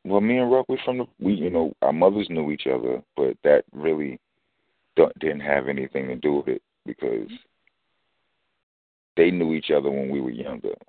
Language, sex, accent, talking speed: English, male, American, 195 wpm